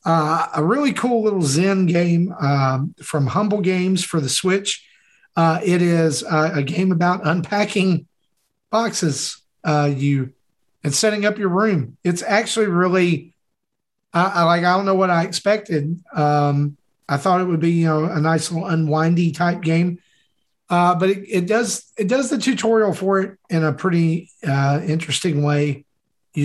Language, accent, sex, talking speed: English, American, male, 170 wpm